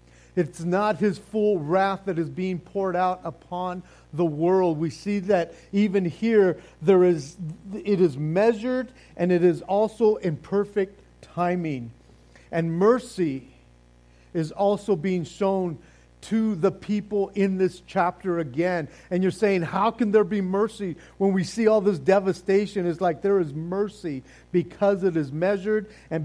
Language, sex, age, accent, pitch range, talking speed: English, male, 50-69, American, 160-200 Hz, 155 wpm